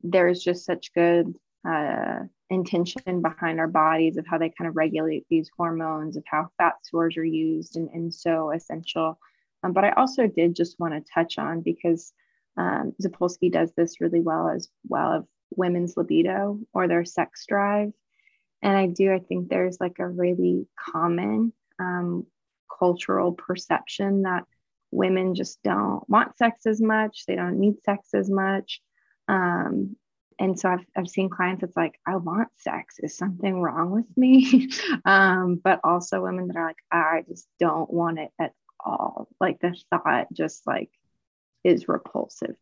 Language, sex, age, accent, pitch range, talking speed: English, female, 20-39, American, 170-200 Hz, 165 wpm